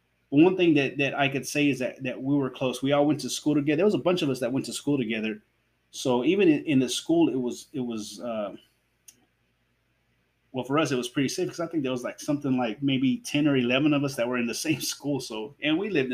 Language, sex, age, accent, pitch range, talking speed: English, male, 30-49, American, 125-180 Hz, 265 wpm